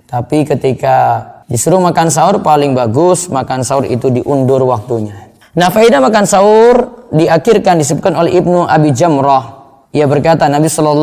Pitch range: 125-165 Hz